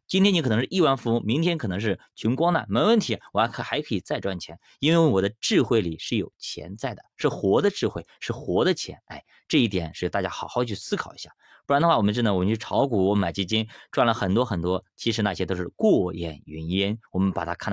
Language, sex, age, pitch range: Chinese, male, 20-39, 95-140 Hz